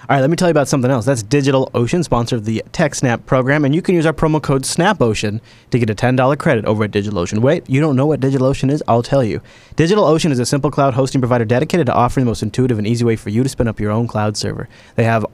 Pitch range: 120-145 Hz